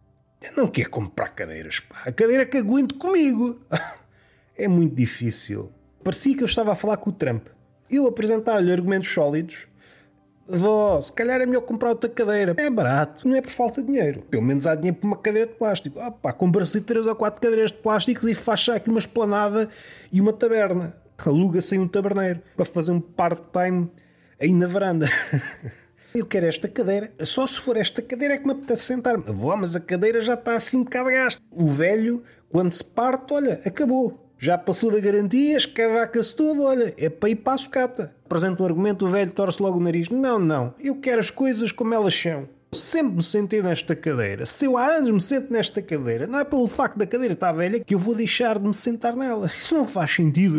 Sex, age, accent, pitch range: male, 30-49, Portuguese, 175-245 Hz